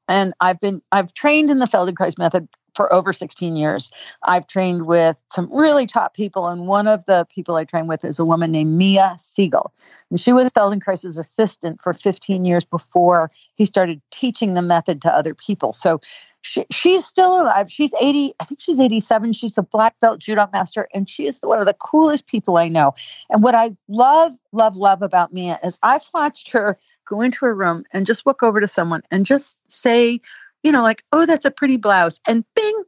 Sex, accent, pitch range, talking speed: female, American, 175-245 Hz, 205 wpm